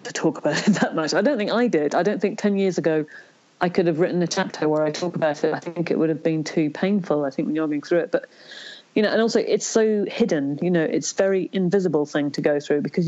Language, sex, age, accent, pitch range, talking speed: English, female, 40-59, British, 160-190 Hz, 280 wpm